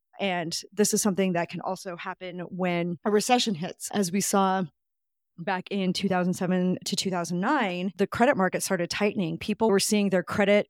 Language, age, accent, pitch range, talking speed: English, 30-49, American, 180-210 Hz, 170 wpm